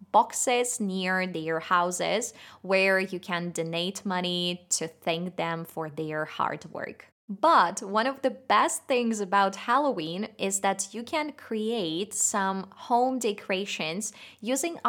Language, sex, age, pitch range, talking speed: Russian, female, 20-39, 175-220 Hz, 135 wpm